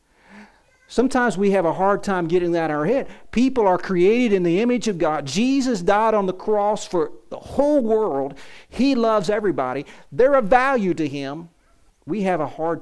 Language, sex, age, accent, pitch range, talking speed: English, male, 50-69, American, 155-205 Hz, 185 wpm